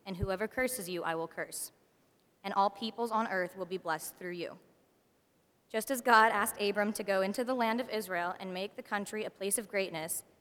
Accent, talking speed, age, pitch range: American, 215 wpm, 20-39, 185-225 Hz